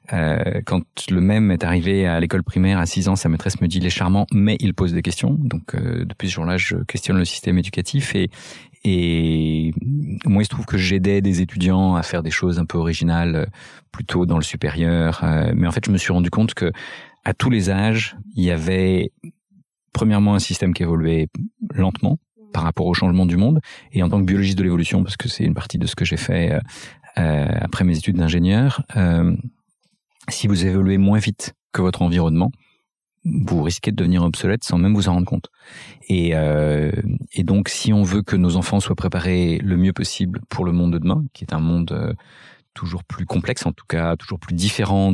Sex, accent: male, French